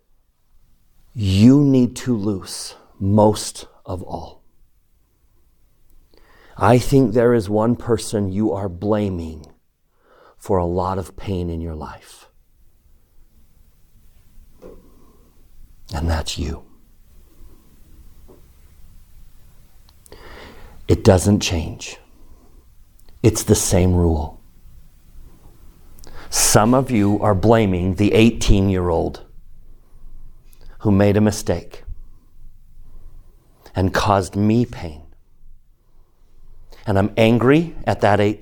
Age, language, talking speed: 50-69, English, 85 wpm